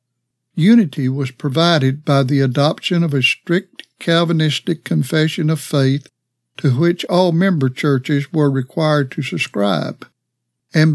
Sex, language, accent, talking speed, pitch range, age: male, English, American, 125 wpm, 140-170 Hz, 60-79